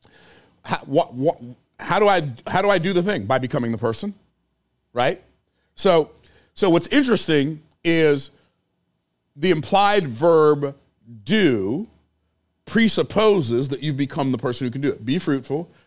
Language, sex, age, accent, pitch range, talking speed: English, male, 40-59, American, 125-165 Hz, 145 wpm